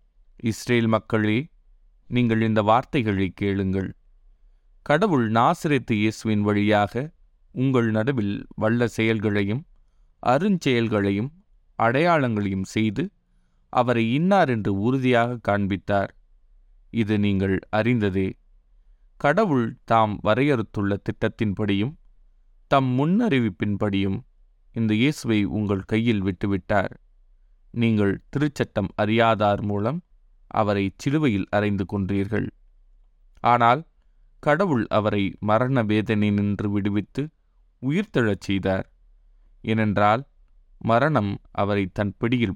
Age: 20-39